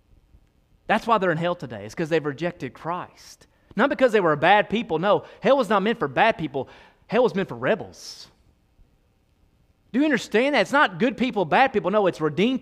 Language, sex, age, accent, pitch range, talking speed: English, male, 30-49, American, 150-215 Hz, 210 wpm